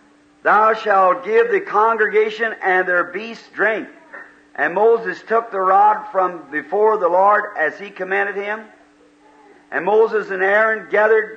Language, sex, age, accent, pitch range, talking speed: English, male, 50-69, American, 155-220 Hz, 145 wpm